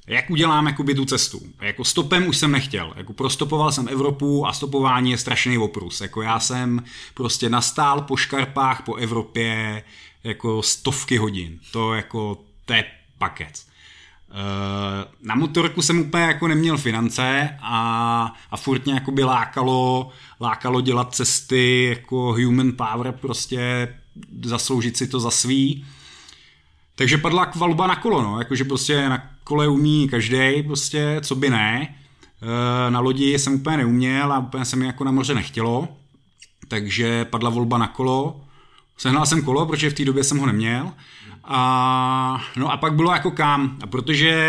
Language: Czech